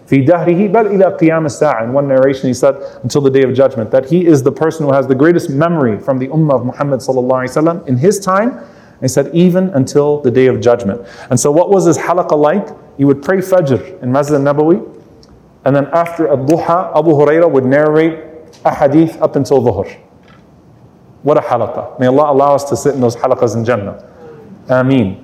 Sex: male